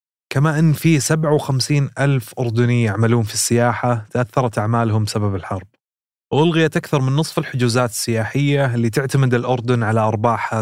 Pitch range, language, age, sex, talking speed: 115-140 Hz, Arabic, 20-39, male, 135 wpm